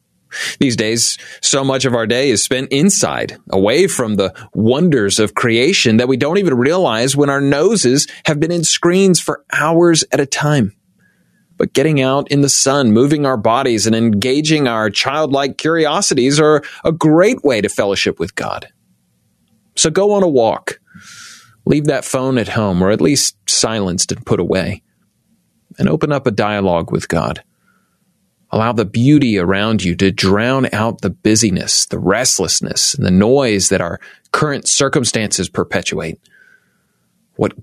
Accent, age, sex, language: American, 30-49, male, English